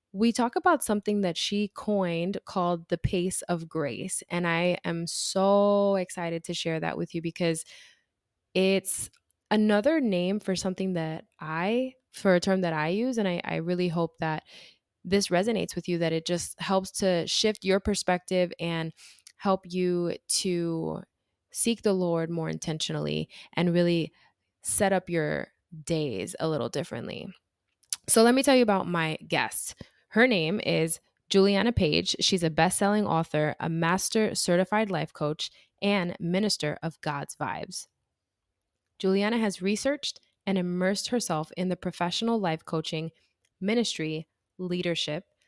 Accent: American